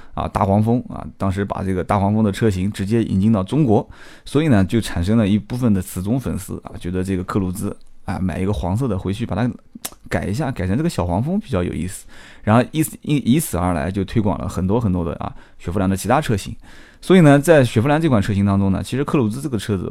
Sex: male